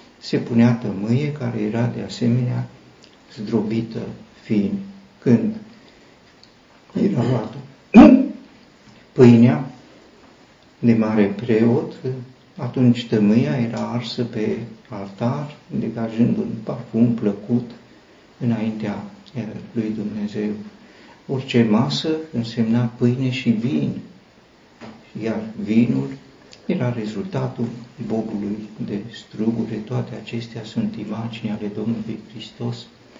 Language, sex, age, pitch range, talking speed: Romanian, male, 50-69, 110-125 Hz, 90 wpm